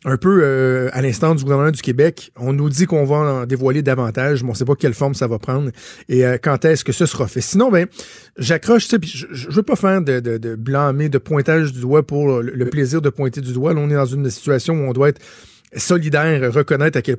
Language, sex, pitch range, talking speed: French, male, 130-160 Hz, 255 wpm